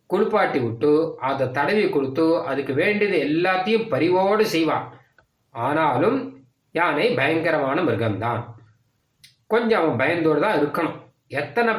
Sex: male